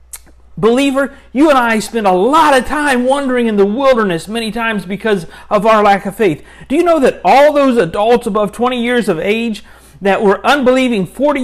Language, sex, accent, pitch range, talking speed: English, male, American, 185-245 Hz, 195 wpm